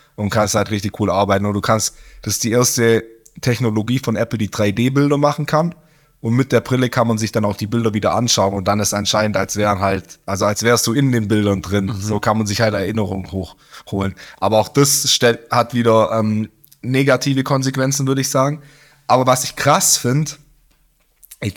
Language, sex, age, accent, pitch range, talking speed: German, male, 20-39, German, 110-145 Hz, 205 wpm